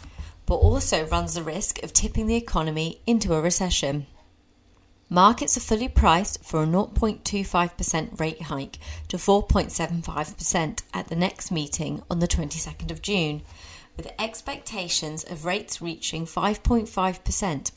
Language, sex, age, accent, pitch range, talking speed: English, female, 30-49, British, 150-200 Hz, 130 wpm